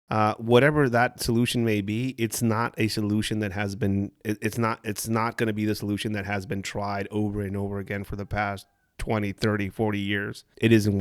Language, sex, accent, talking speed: English, male, American, 215 wpm